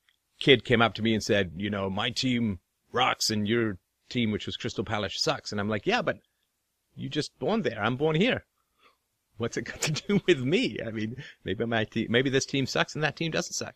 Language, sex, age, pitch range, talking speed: English, male, 30-49, 105-135 Hz, 230 wpm